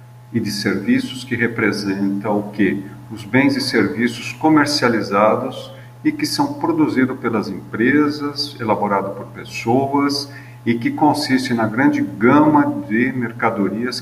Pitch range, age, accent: 105-130 Hz, 50-69, Brazilian